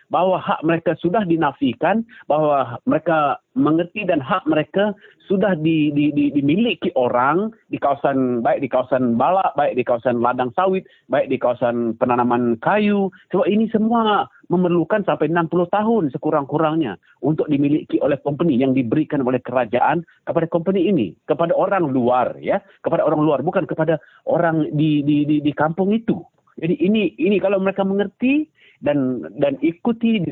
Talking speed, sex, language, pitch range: 155 wpm, male, English, 135-190 Hz